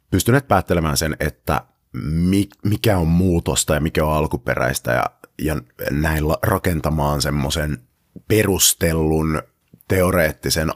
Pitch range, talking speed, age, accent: 75-90 Hz, 100 wpm, 30-49, native